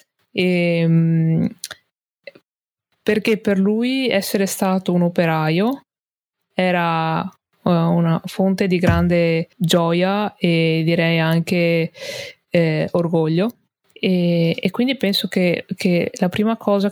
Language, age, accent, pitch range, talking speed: Italian, 20-39, native, 175-195 Hz, 95 wpm